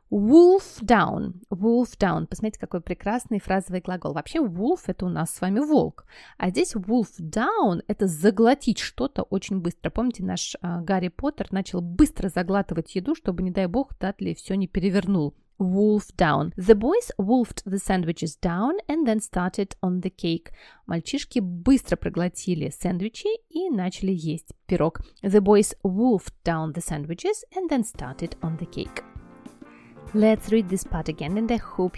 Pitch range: 180-220 Hz